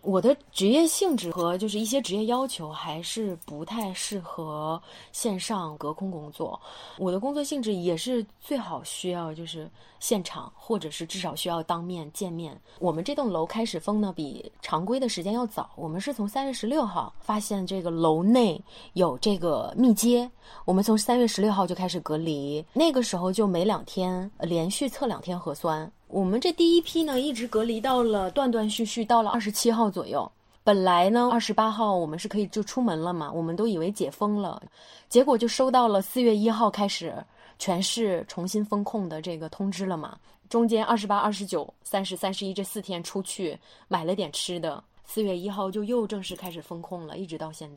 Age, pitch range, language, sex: 20-39, 175-230 Hz, Chinese, female